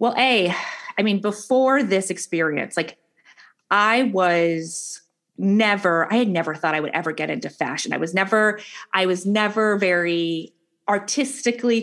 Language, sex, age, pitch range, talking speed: English, female, 30-49, 165-210 Hz, 145 wpm